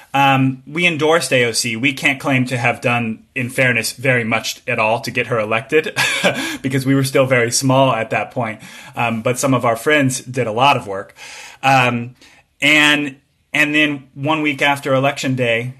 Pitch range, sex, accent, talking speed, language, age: 120-140 Hz, male, American, 185 wpm, English, 30-49